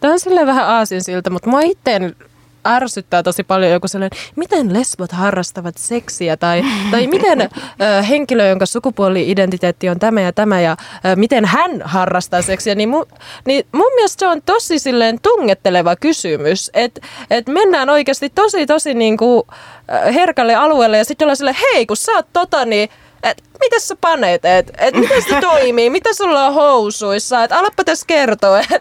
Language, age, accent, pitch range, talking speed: Finnish, 20-39, native, 195-300 Hz, 160 wpm